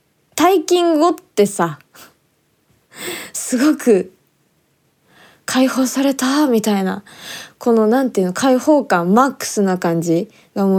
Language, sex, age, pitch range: Japanese, female, 20-39, 190-275 Hz